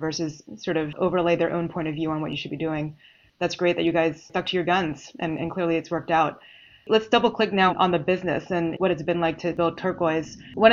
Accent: American